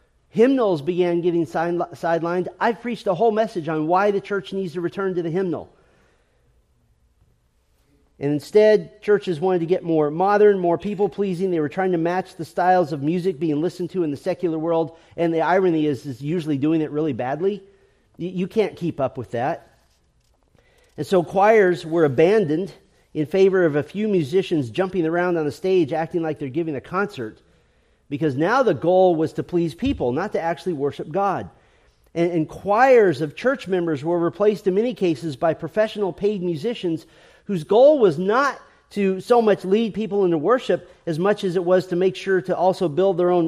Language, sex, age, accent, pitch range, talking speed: English, male, 40-59, American, 160-205 Hz, 185 wpm